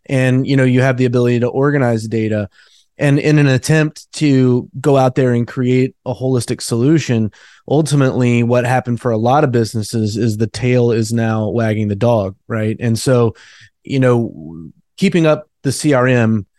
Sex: male